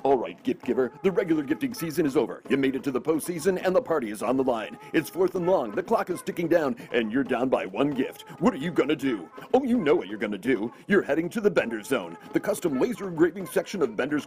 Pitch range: 160-225 Hz